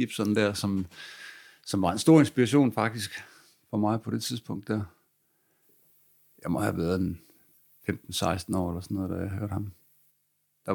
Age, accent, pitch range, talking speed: 60-79, native, 95-125 Hz, 165 wpm